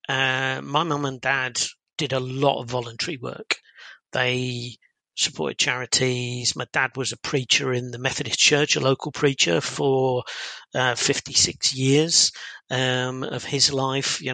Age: 40-59